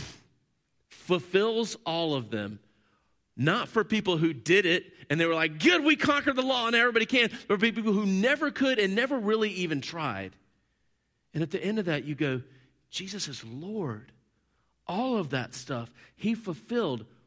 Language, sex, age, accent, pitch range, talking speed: English, male, 40-59, American, 125-200 Hz, 175 wpm